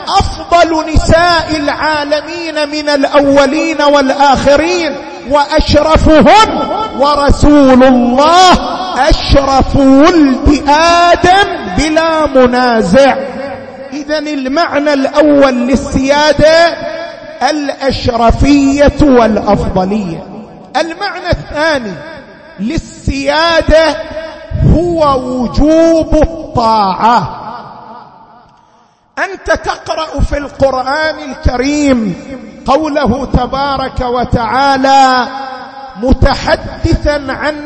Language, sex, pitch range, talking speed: Arabic, male, 265-315 Hz, 55 wpm